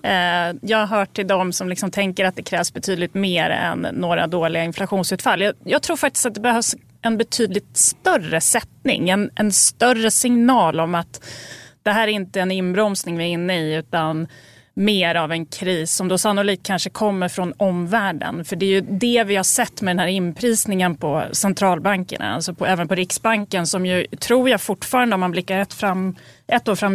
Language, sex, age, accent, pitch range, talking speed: Swedish, female, 30-49, native, 180-230 Hz, 195 wpm